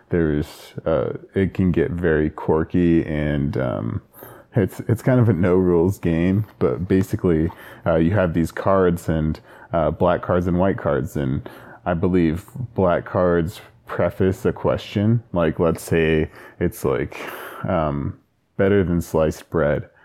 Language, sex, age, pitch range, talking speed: English, male, 20-39, 80-95 Hz, 145 wpm